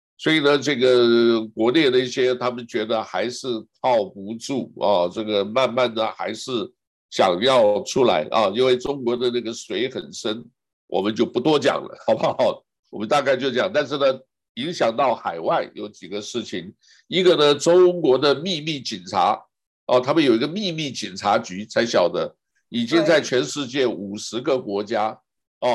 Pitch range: 115-145 Hz